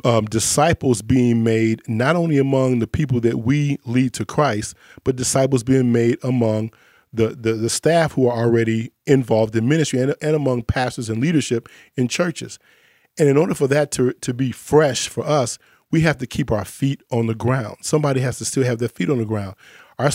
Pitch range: 115-145 Hz